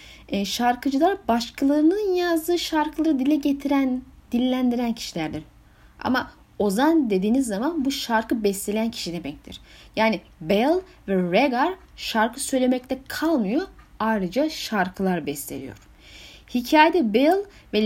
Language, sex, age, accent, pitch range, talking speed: Turkish, female, 10-29, native, 195-285 Hz, 100 wpm